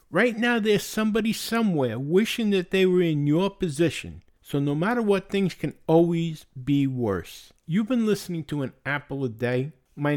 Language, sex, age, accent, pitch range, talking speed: English, male, 60-79, American, 145-200 Hz, 175 wpm